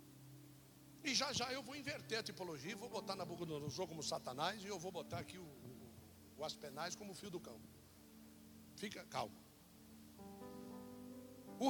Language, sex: Portuguese, male